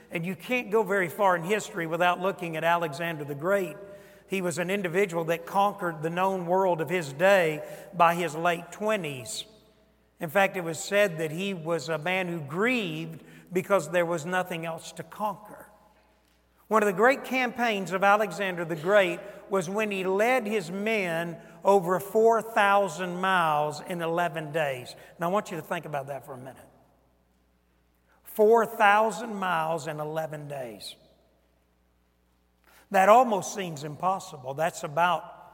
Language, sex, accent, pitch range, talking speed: English, male, American, 160-205 Hz, 155 wpm